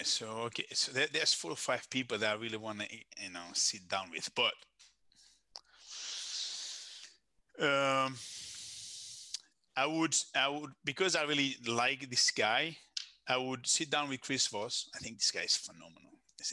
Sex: male